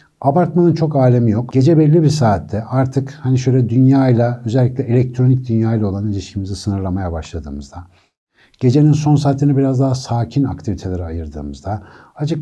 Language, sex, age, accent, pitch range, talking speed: Turkish, male, 60-79, native, 95-130 Hz, 140 wpm